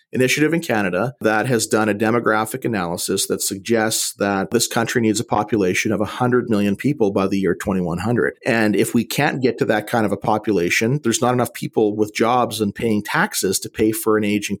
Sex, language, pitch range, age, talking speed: male, English, 105-130 Hz, 40-59, 205 wpm